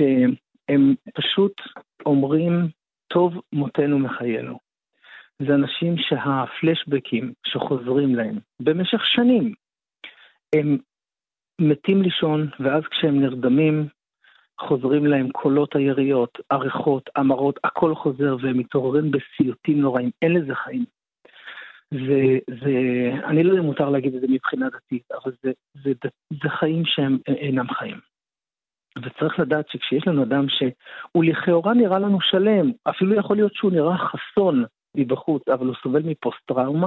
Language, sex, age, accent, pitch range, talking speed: Hebrew, male, 50-69, native, 130-165 Hz, 120 wpm